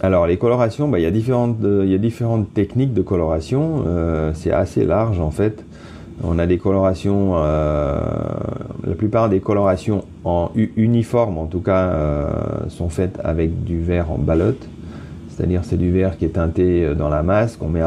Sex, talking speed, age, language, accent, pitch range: male, 175 wpm, 40-59, French, French, 80-100 Hz